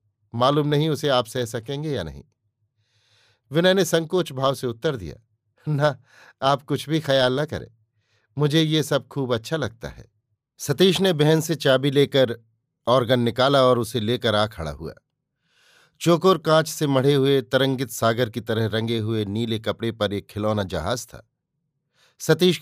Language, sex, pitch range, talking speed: Hindi, male, 115-150 Hz, 165 wpm